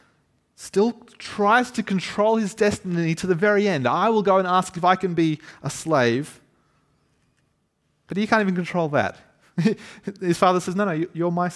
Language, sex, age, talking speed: English, male, 30-49, 175 wpm